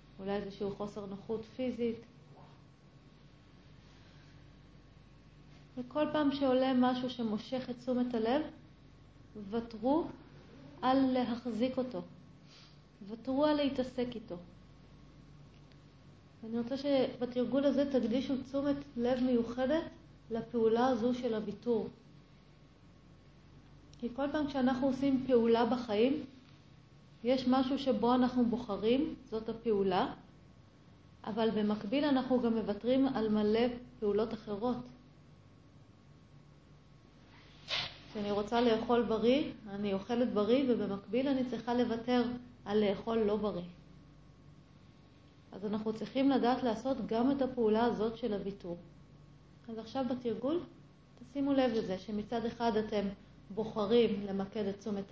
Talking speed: 105 wpm